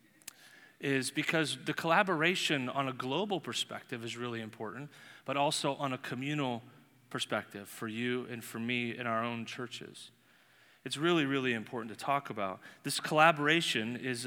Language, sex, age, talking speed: English, male, 30-49, 150 wpm